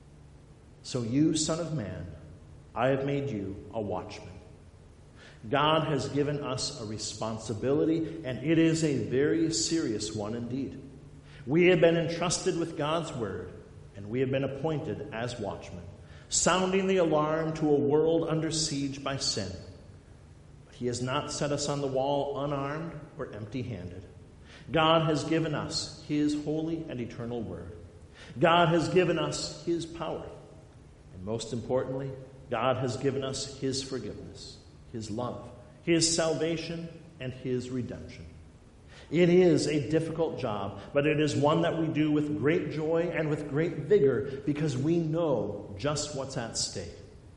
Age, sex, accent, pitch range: 50-69, male, American, 120-160 Hz